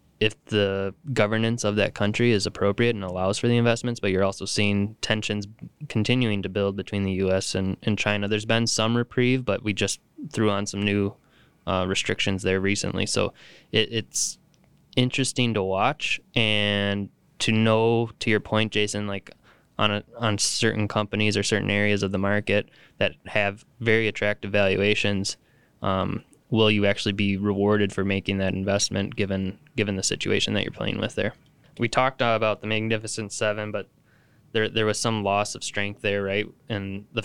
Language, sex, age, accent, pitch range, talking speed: English, male, 20-39, American, 100-115 Hz, 175 wpm